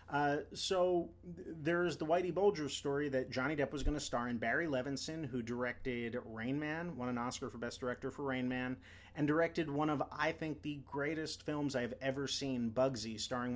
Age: 30-49